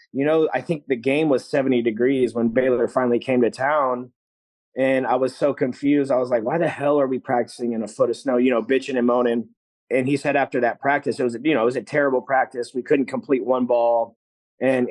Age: 30-49